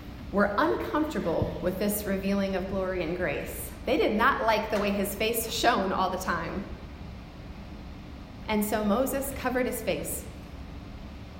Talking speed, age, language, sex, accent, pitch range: 140 wpm, 30-49, English, female, American, 175-225 Hz